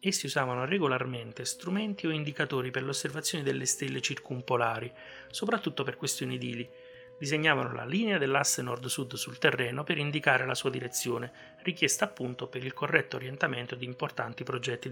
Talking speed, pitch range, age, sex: 145 wpm, 125-180 Hz, 30-49, male